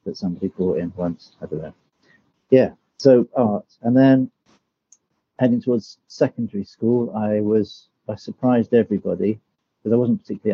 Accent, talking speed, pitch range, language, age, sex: British, 140 wpm, 95-115 Hz, English, 50-69, male